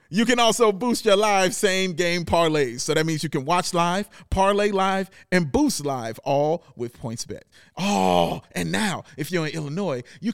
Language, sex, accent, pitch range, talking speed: English, male, American, 160-215 Hz, 180 wpm